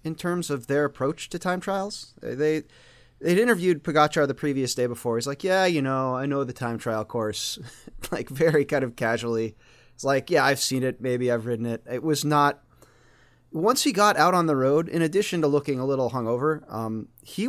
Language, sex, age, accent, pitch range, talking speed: English, male, 30-49, American, 115-150 Hz, 210 wpm